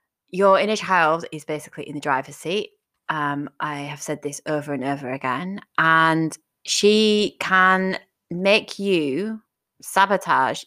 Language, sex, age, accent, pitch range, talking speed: English, female, 20-39, British, 145-180 Hz, 135 wpm